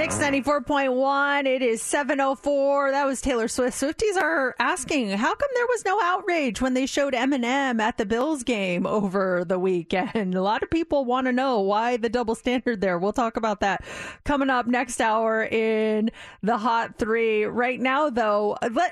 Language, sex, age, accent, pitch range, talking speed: English, female, 30-49, American, 215-285 Hz, 180 wpm